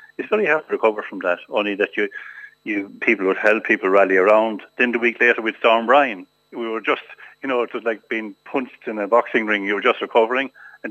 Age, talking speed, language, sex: 60-79, 240 wpm, English, male